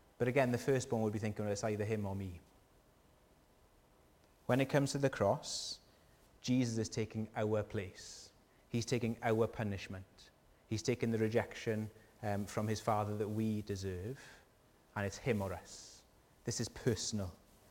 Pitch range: 100-125 Hz